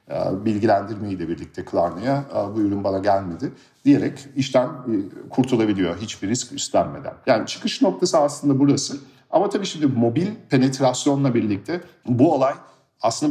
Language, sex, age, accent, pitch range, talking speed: Turkish, male, 50-69, native, 100-135 Hz, 125 wpm